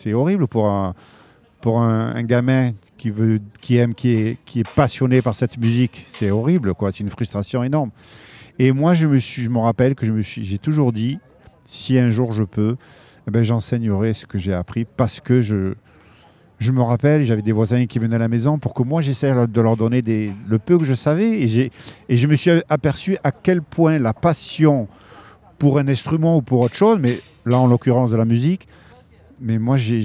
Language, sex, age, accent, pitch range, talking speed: French, male, 50-69, French, 110-140 Hz, 195 wpm